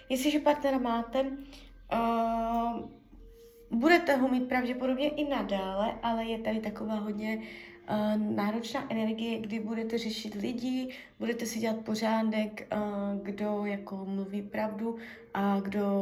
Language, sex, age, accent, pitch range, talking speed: Czech, female, 20-39, native, 205-240 Hz, 125 wpm